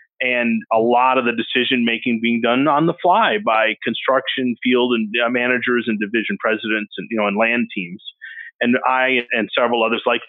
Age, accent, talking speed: 30-49, American, 185 wpm